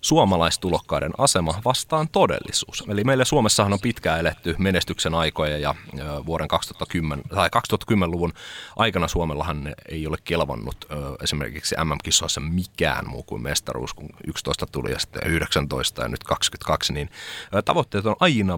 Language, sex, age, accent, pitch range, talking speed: Finnish, male, 30-49, native, 80-100 Hz, 130 wpm